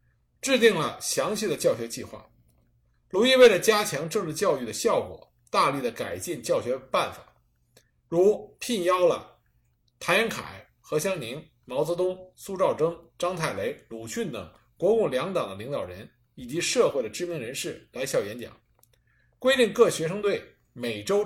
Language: Chinese